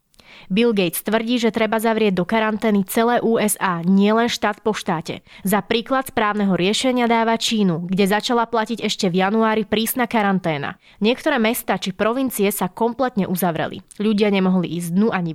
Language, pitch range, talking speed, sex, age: Slovak, 195-240 Hz, 155 wpm, female, 20-39